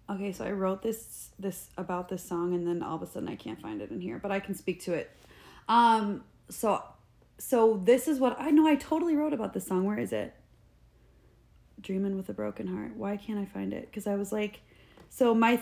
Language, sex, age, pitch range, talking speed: English, female, 30-49, 190-240 Hz, 230 wpm